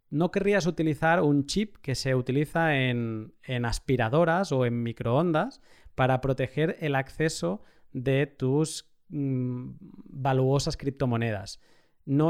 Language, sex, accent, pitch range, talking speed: Spanish, male, Spanish, 125-155 Hz, 110 wpm